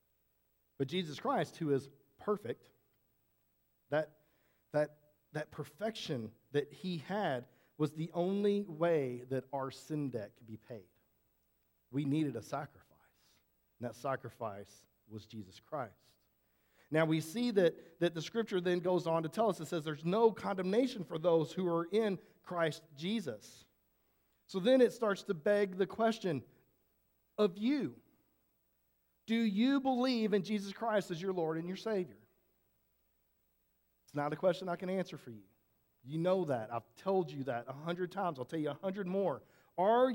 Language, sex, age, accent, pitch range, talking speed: English, male, 40-59, American, 125-190 Hz, 160 wpm